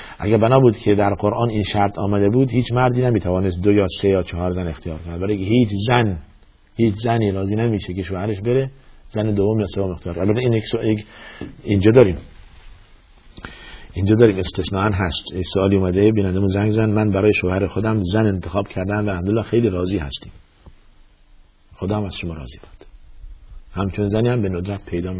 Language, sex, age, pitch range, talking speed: Persian, male, 50-69, 90-115 Hz, 190 wpm